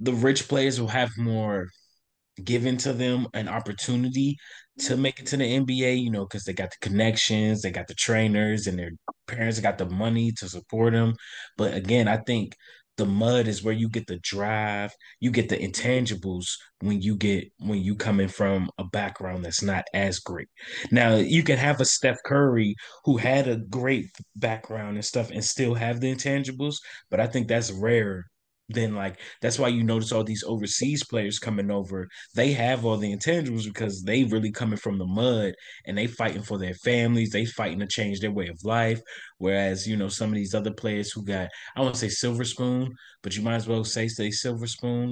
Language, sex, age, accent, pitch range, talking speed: English, male, 20-39, American, 100-125 Hz, 205 wpm